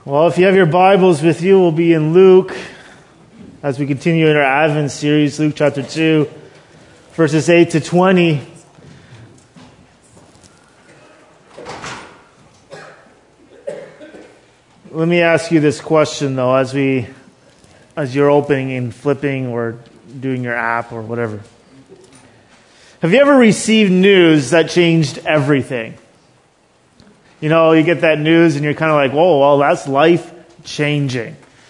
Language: English